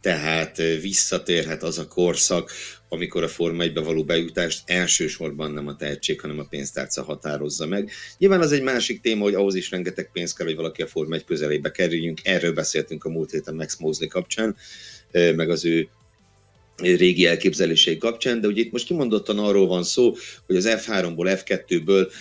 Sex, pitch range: male, 85-100 Hz